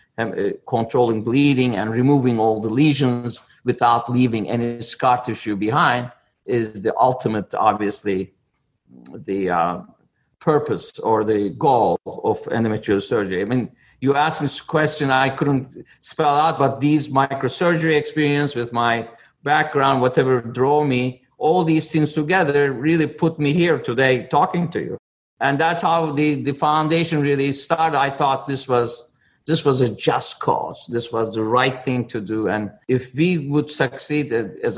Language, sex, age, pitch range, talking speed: English, male, 50-69, 120-145 Hz, 155 wpm